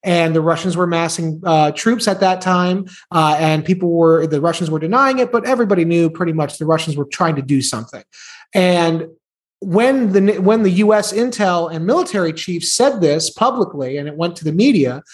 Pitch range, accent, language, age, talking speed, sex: 165-210 Hz, American, English, 30-49, 200 wpm, male